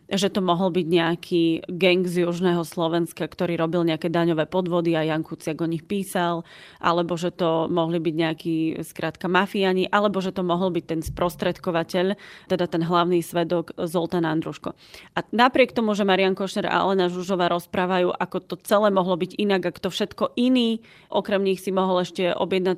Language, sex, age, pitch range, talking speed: Czech, female, 30-49, 170-195 Hz, 175 wpm